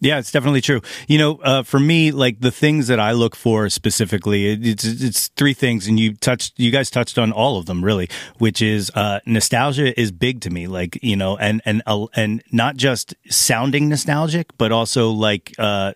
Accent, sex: American, male